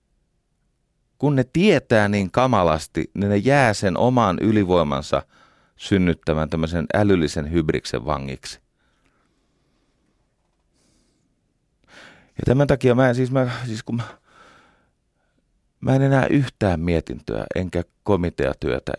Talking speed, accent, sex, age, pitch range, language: 105 wpm, native, male, 30-49, 85-125 Hz, Finnish